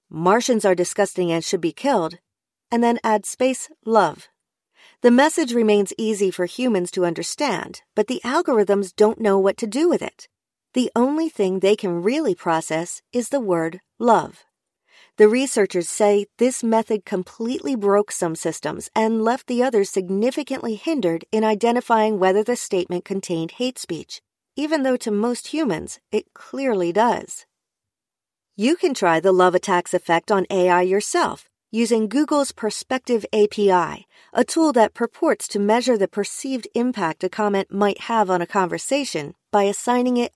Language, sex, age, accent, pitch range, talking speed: English, female, 40-59, American, 185-245 Hz, 155 wpm